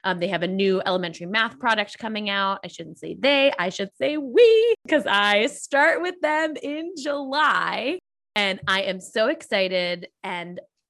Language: English